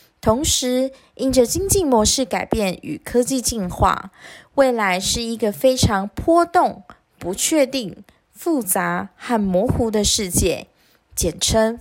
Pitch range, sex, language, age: 195-270 Hz, female, Chinese, 20-39